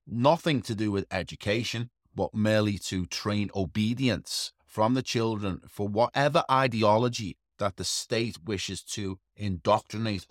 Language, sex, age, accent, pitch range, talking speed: English, male, 30-49, British, 90-115 Hz, 130 wpm